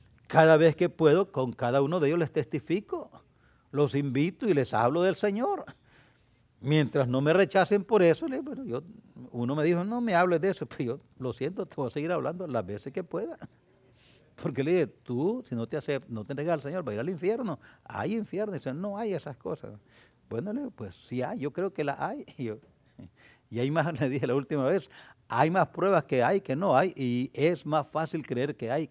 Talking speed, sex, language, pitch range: 225 wpm, male, English, 135-205 Hz